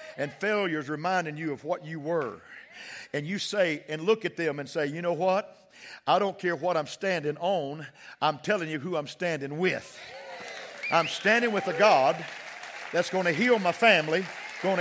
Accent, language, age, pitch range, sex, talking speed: American, English, 50-69, 115-195 Hz, male, 185 wpm